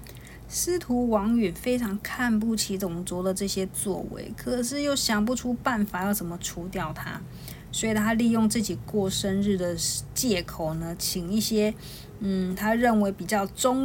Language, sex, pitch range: Chinese, female, 185-245 Hz